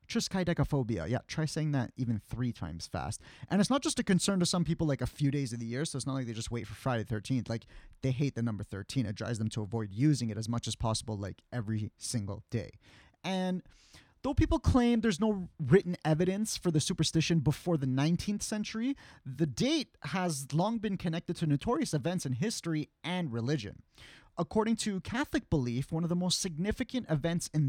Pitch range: 125-180 Hz